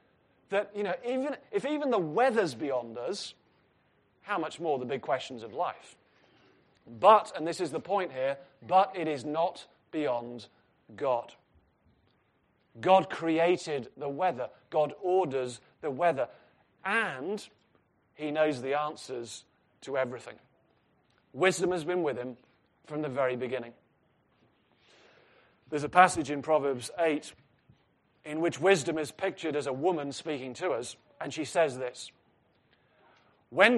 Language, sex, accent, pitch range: English, male, British, 135-180 Hz